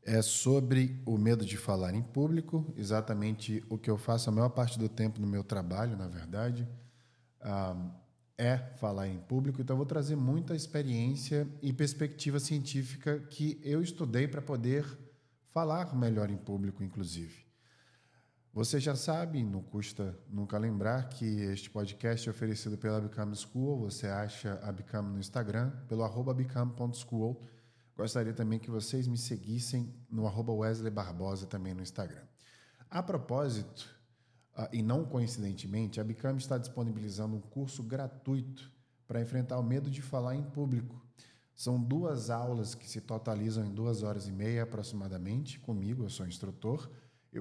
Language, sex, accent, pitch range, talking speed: Portuguese, male, Brazilian, 105-130 Hz, 150 wpm